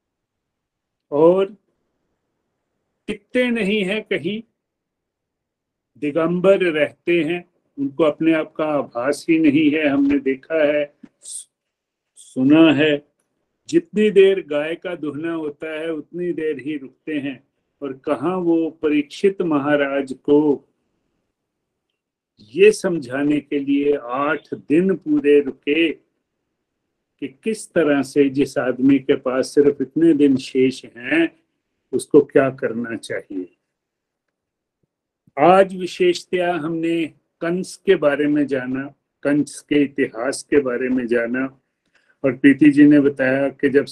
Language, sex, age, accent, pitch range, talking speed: Hindi, male, 50-69, native, 140-180 Hz, 115 wpm